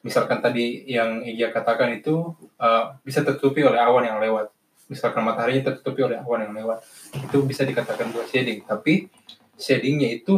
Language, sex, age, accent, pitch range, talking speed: Indonesian, male, 20-39, native, 120-145 Hz, 160 wpm